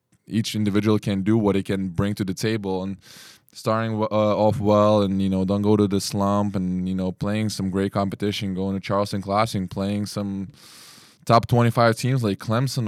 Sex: male